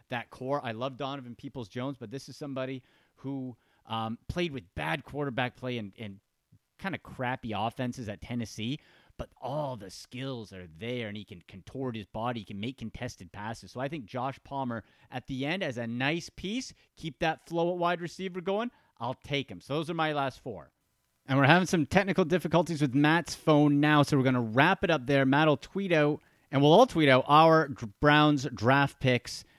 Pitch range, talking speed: 120-155 Hz, 205 wpm